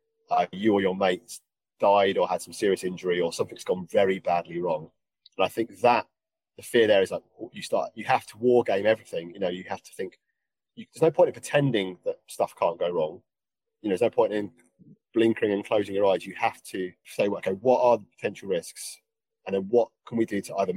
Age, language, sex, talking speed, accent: 30-49, English, male, 230 wpm, British